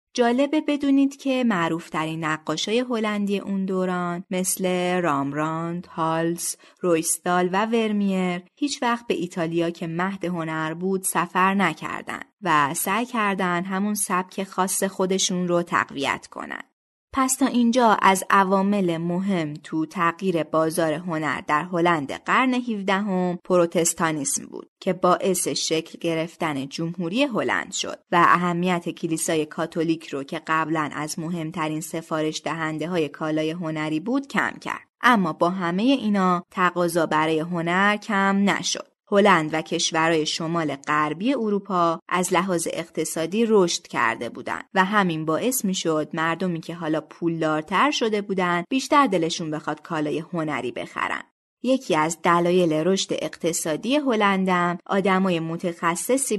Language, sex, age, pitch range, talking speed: Persian, female, 20-39, 160-195 Hz, 130 wpm